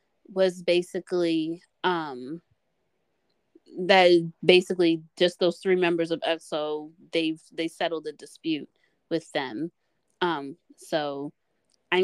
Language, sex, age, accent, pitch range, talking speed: English, female, 20-39, American, 165-210 Hz, 105 wpm